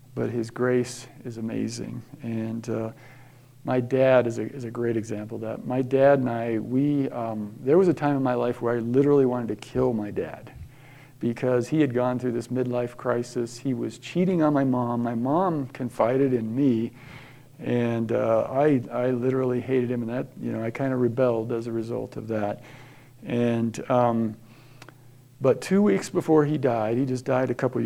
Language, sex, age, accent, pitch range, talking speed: English, male, 50-69, American, 115-130 Hz, 195 wpm